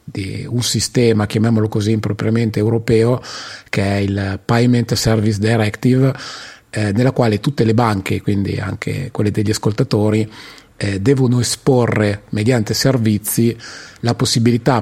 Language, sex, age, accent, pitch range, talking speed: Italian, male, 30-49, native, 105-120 Hz, 125 wpm